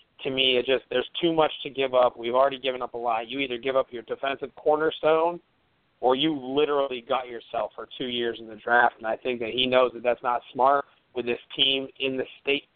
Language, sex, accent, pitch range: English, male, American, 125-140 Hz